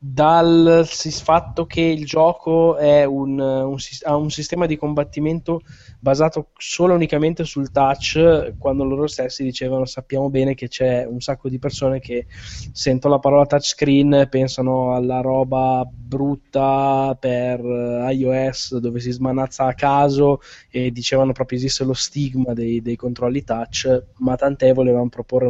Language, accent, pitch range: Italian, native, 130-150 Hz